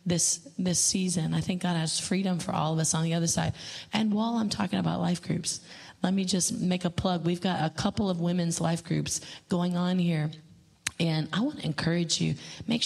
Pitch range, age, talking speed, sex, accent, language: 165-190 Hz, 30-49, 220 wpm, female, American, English